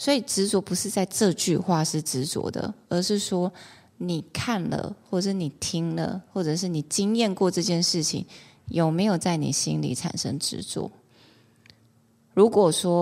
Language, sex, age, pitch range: Chinese, female, 20-39, 145-185 Hz